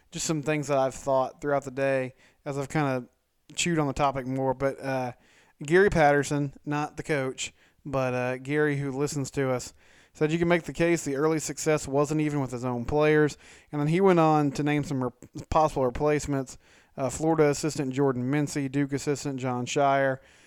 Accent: American